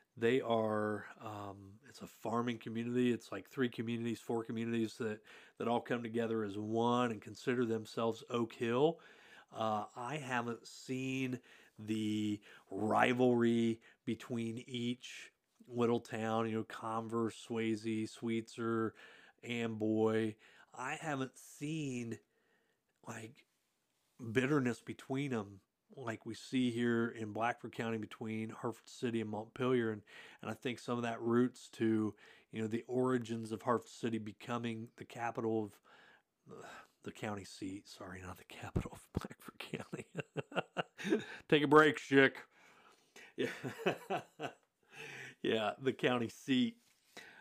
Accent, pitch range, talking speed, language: American, 110-125 Hz, 125 wpm, English